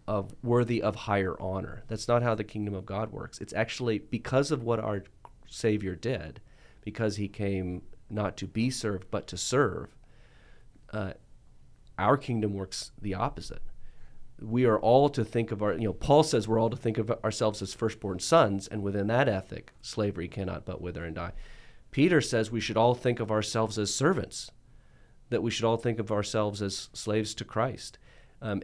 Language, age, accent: English, 40-59, American